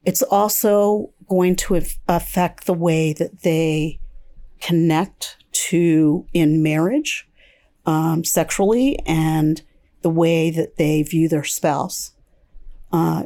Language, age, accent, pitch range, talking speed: English, 50-69, American, 165-210 Hz, 110 wpm